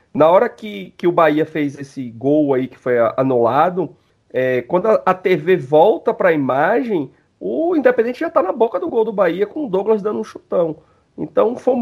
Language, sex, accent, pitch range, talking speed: Portuguese, male, Brazilian, 130-190 Hz, 205 wpm